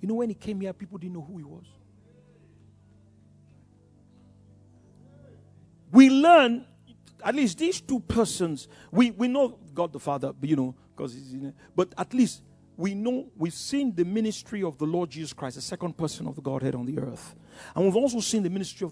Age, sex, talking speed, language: 50-69, male, 195 wpm, English